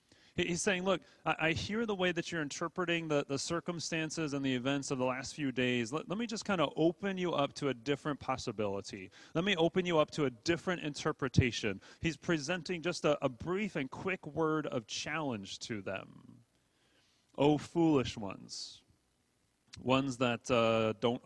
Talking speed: 180 wpm